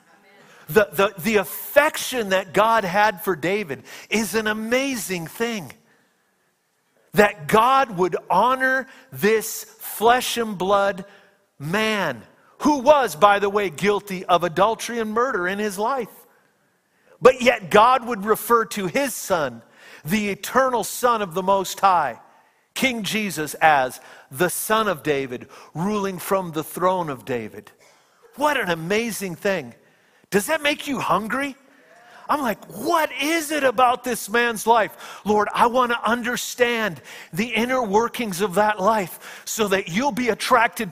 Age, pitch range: 50-69, 195-240 Hz